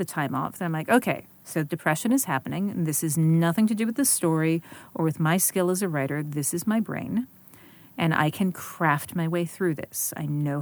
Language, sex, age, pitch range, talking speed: English, female, 40-59, 160-195 Hz, 230 wpm